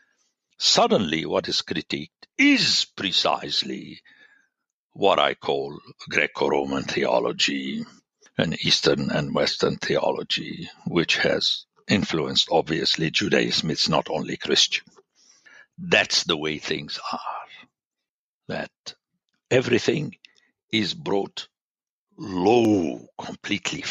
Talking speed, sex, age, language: 90 wpm, male, 60-79, English